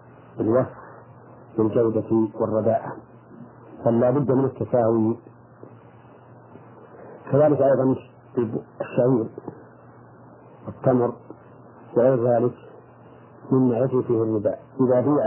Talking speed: 65 wpm